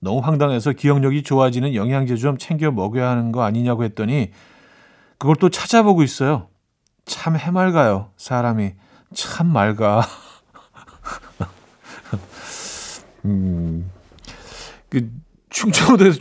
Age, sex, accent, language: 40-59, male, native, Korean